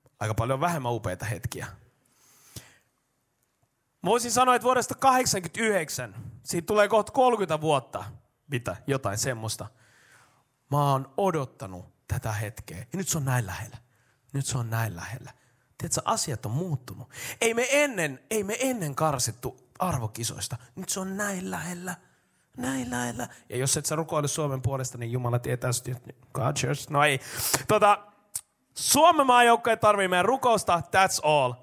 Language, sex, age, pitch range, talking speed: Finnish, male, 30-49, 125-185 Hz, 145 wpm